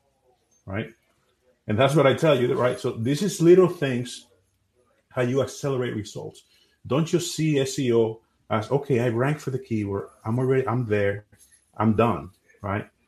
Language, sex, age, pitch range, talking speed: English, male, 30-49, 105-130 Hz, 160 wpm